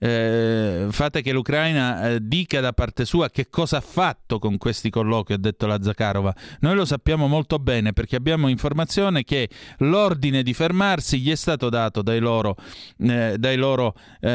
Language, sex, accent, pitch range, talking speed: Italian, male, native, 115-150 Hz, 155 wpm